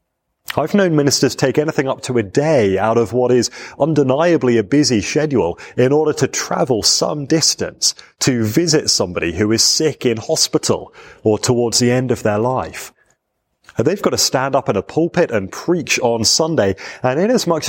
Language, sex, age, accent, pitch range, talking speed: English, male, 30-49, British, 110-145 Hz, 175 wpm